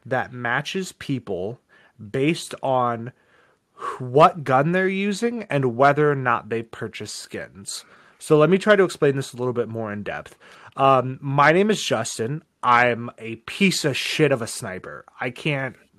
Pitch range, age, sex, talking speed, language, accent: 120-165 Hz, 30-49, male, 165 wpm, English, American